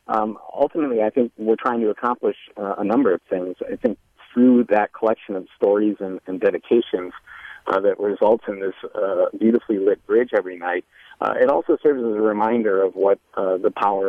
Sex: male